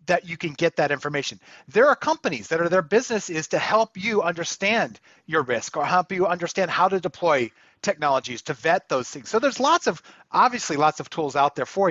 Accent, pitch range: American, 160-220 Hz